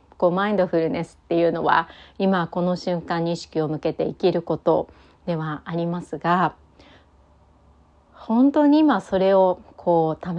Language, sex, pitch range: Japanese, female, 165-240 Hz